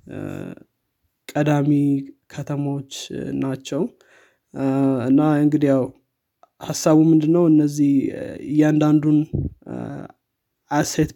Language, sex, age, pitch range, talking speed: Amharic, male, 20-39, 135-155 Hz, 60 wpm